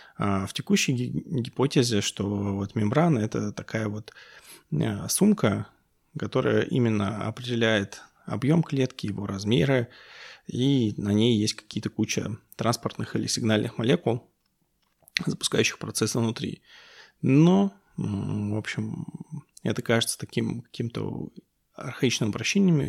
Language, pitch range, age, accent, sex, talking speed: Russian, 105-130 Hz, 20-39, native, male, 100 wpm